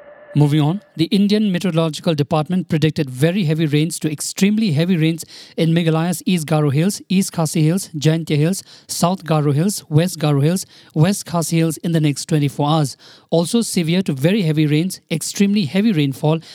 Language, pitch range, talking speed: English, 155-185 Hz, 170 wpm